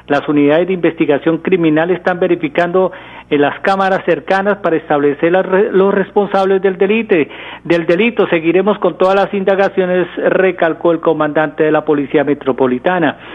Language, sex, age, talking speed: Spanish, male, 40-59, 135 wpm